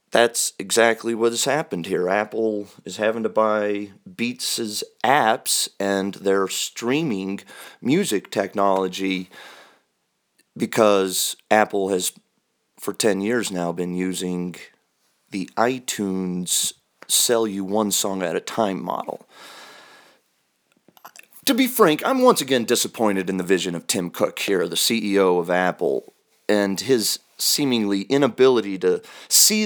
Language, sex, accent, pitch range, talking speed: English, male, American, 100-135 Hz, 110 wpm